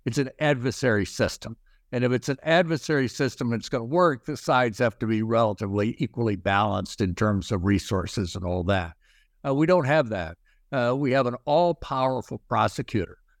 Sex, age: male, 60-79